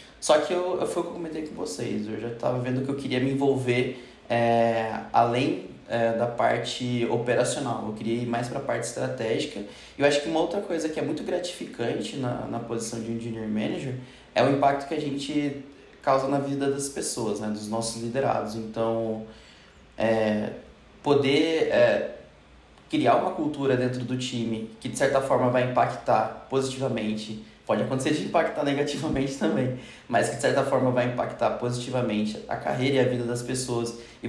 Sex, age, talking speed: male, 20-39, 185 wpm